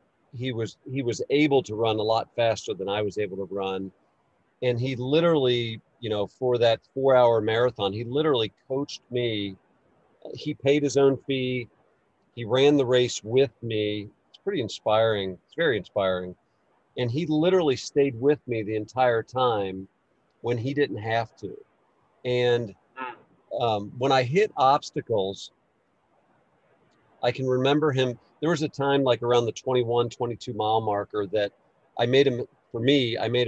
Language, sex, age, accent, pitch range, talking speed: English, male, 50-69, American, 110-130 Hz, 160 wpm